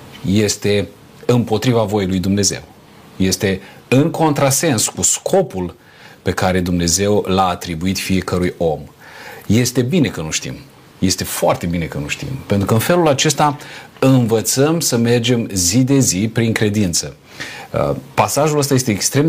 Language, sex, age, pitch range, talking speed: Romanian, male, 40-59, 95-130 Hz, 140 wpm